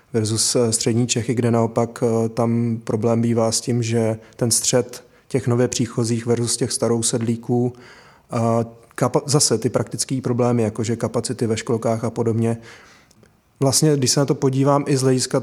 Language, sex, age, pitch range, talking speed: Czech, male, 20-39, 115-130 Hz, 155 wpm